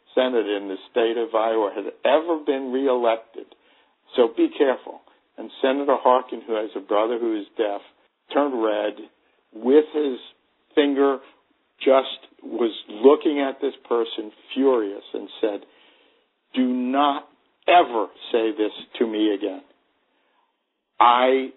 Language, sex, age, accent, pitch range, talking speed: English, male, 50-69, American, 115-140 Hz, 130 wpm